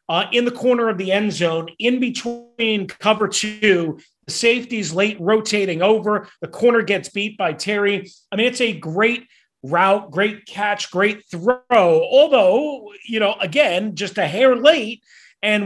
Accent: American